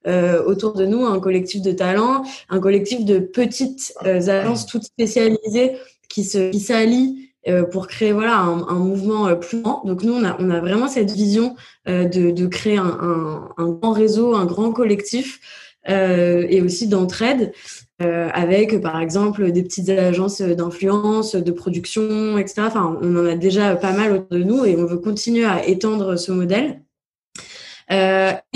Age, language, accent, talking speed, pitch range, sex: 20-39, French, French, 175 wpm, 185-225 Hz, female